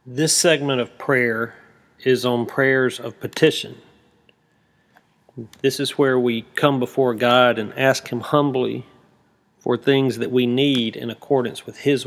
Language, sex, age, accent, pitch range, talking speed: English, male, 40-59, American, 120-140 Hz, 145 wpm